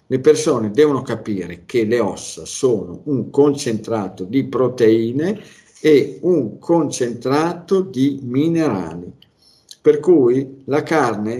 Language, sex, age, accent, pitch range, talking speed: Italian, male, 50-69, native, 105-130 Hz, 110 wpm